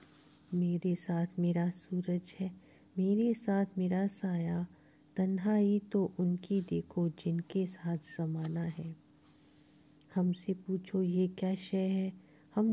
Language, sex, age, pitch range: Hindi, female, 50-69, 165-195 Hz